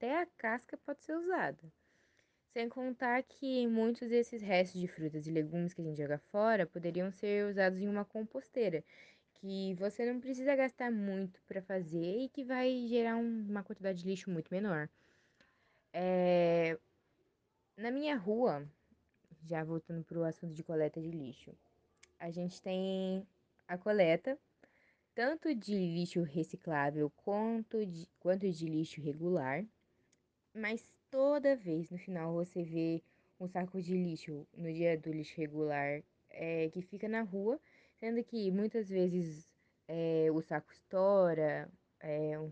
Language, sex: Portuguese, female